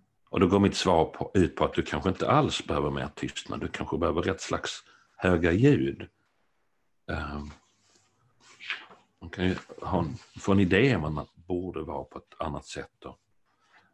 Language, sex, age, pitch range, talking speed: Swedish, male, 50-69, 75-100 Hz, 170 wpm